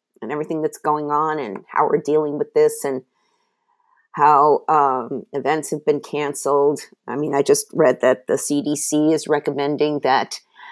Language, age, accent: English, 50-69, American